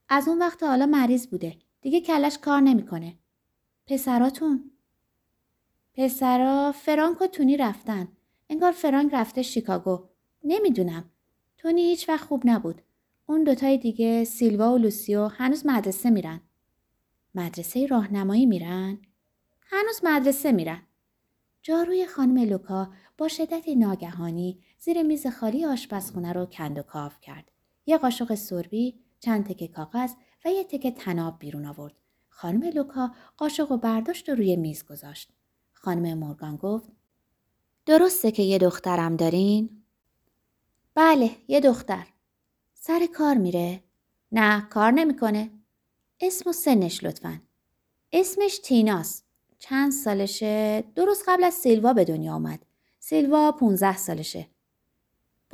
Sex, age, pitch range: female, 20-39, 185-285 Hz